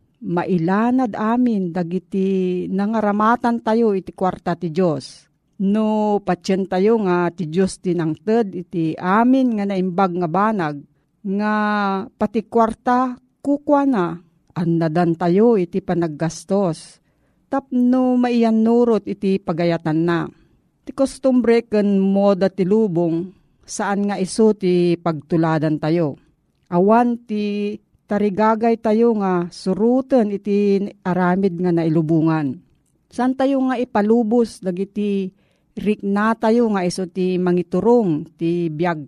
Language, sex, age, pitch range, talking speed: Filipino, female, 40-59, 175-225 Hz, 110 wpm